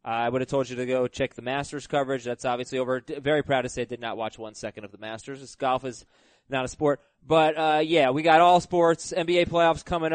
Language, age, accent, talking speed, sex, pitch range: English, 20-39, American, 260 wpm, male, 130-170 Hz